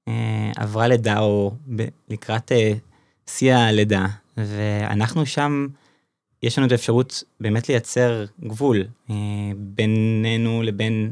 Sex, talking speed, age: male, 90 wpm, 20-39